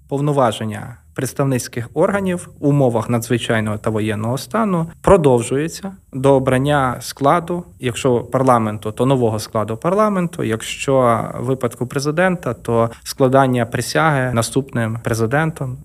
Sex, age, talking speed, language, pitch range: male, 20-39, 100 wpm, Ukrainian, 115-150 Hz